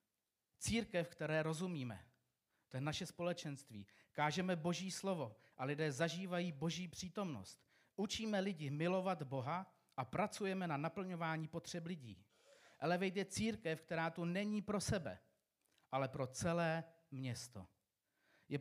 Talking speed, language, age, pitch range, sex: 125 wpm, Czech, 40-59, 130-175 Hz, male